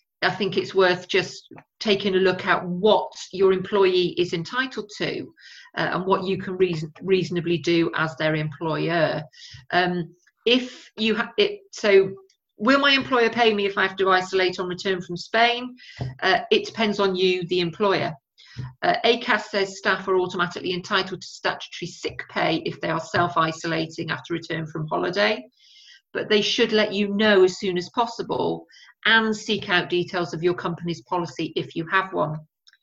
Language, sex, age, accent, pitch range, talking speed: English, female, 40-59, British, 175-210 Hz, 170 wpm